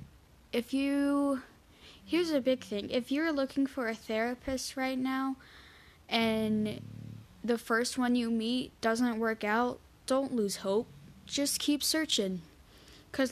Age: 10-29